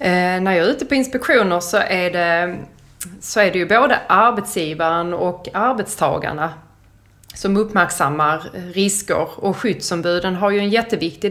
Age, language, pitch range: 30-49, Swedish, 170-205 Hz